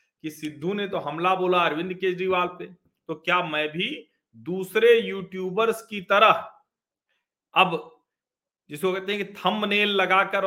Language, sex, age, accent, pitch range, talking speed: Hindi, male, 40-59, native, 170-230 Hz, 140 wpm